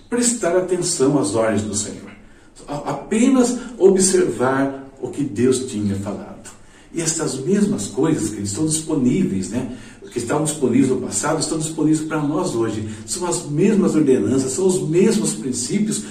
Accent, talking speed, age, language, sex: Brazilian, 145 wpm, 60-79, Portuguese, male